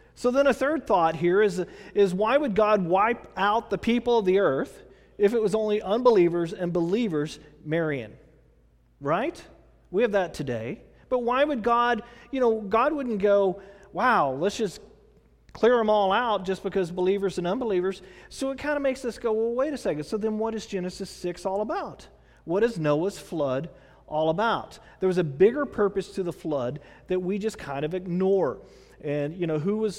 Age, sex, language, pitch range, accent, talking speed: 40-59, male, English, 160-220 Hz, American, 190 wpm